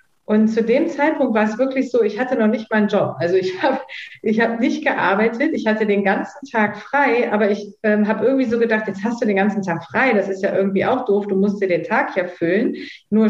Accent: German